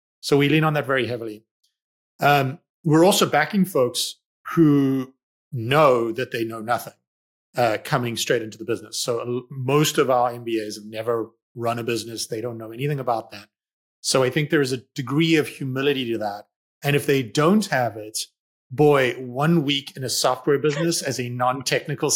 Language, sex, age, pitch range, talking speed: English, male, 30-49, 120-155 Hz, 180 wpm